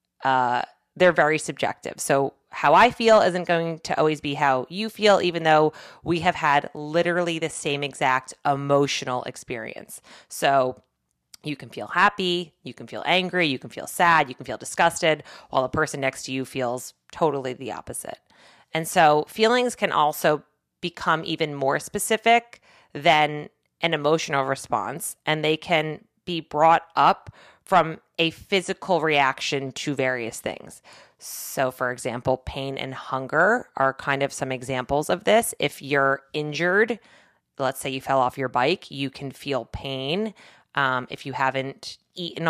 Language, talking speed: English, 160 wpm